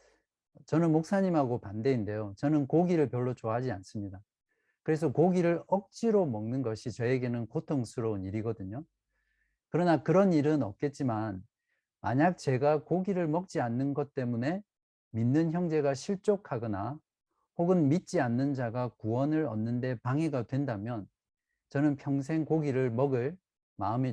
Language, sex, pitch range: Korean, male, 115-155 Hz